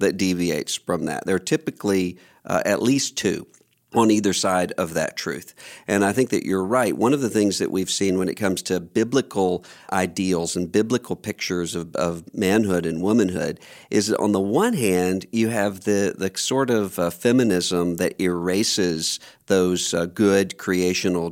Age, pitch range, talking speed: 50-69, 90-110 Hz, 180 wpm